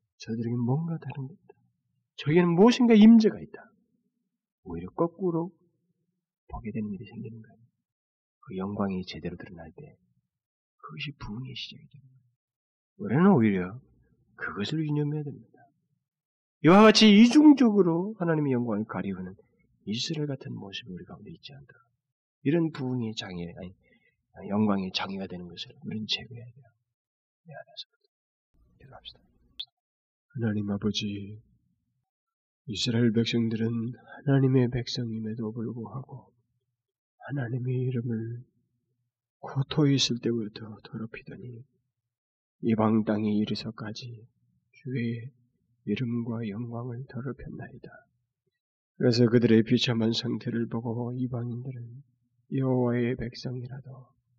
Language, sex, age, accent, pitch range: Korean, male, 40-59, native, 115-140 Hz